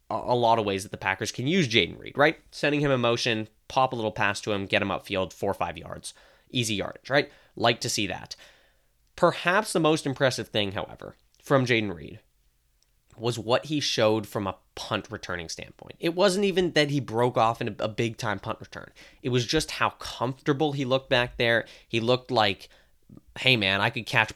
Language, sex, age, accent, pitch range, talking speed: English, male, 20-39, American, 105-130 Hz, 205 wpm